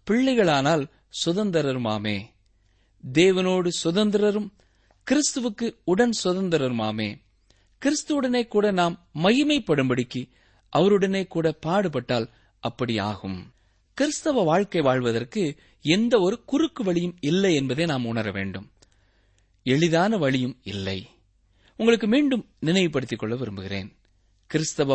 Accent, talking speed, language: native, 85 wpm, Tamil